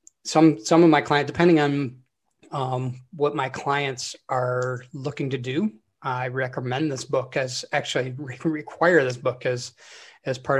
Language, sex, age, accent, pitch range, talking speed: English, male, 30-49, American, 130-150 Hz, 160 wpm